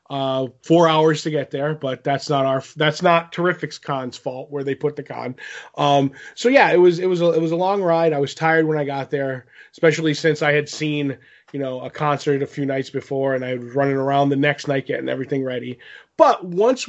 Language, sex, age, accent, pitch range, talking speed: English, male, 20-39, American, 140-165 Hz, 235 wpm